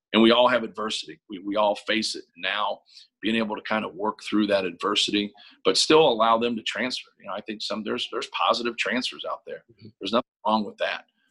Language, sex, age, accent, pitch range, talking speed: English, male, 40-59, American, 105-120 Hz, 225 wpm